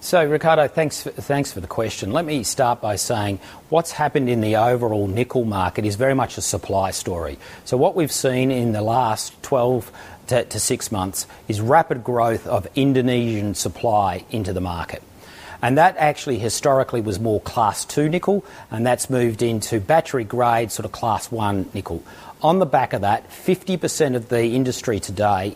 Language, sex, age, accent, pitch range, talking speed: English, male, 40-59, Australian, 105-130 Hz, 175 wpm